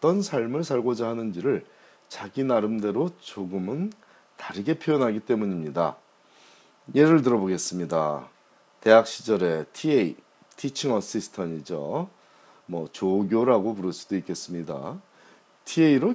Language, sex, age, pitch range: Korean, male, 40-59, 95-130 Hz